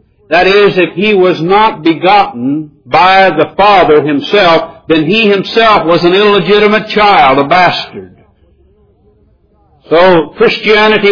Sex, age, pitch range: male, 60-79, 140-190 Hz